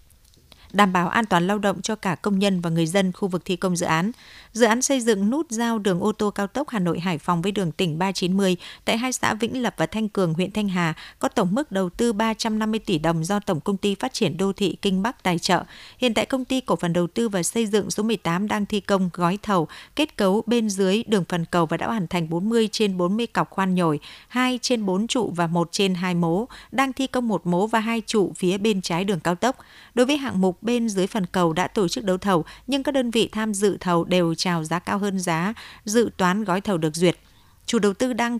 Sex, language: female, Vietnamese